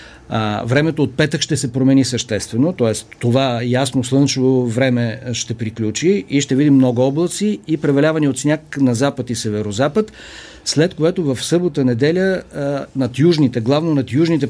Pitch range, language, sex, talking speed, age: 120-150 Hz, Bulgarian, male, 150 wpm, 50-69